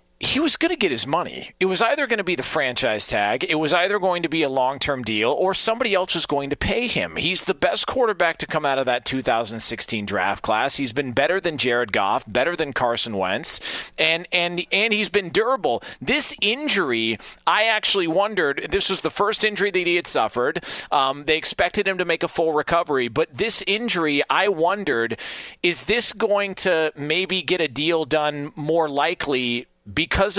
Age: 40-59